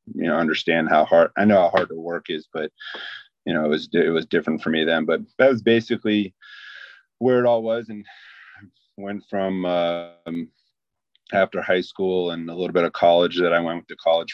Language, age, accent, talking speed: English, 30-49, American, 205 wpm